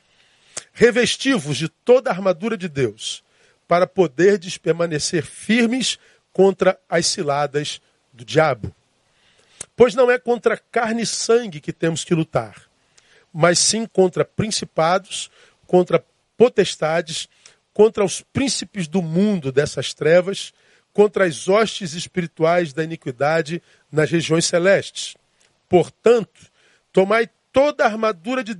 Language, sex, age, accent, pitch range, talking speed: Portuguese, male, 40-59, Brazilian, 160-205 Hz, 115 wpm